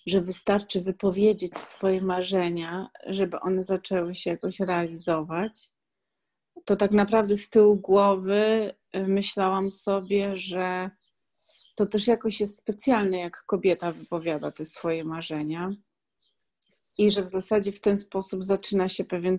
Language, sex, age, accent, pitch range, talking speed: Polish, female, 30-49, native, 170-195 Hz, 125 wpm